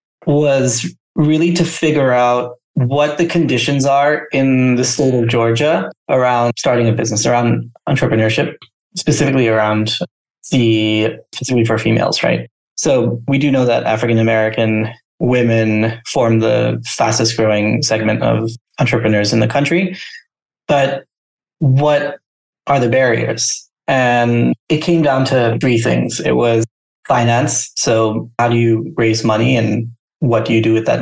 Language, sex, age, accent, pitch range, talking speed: English, male, 20-39, American, 115-140 Hz, 140 wpm